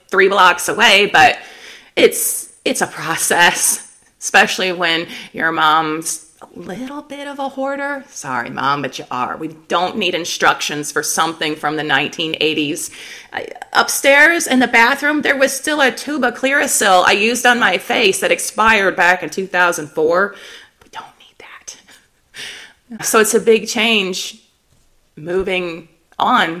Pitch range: 175-240 Hz